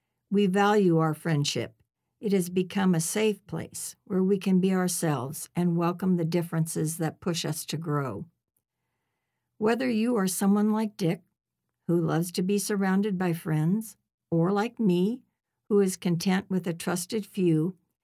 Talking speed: 155 wpm